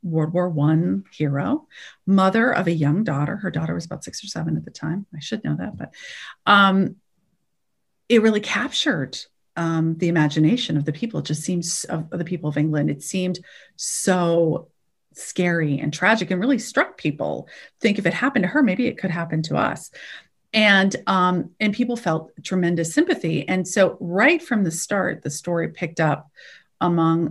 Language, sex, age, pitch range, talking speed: English, female, 40-59, 160-205 Hz, 180 wpm